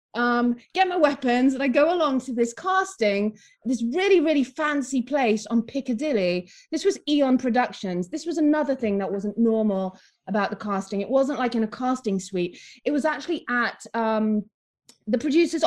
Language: English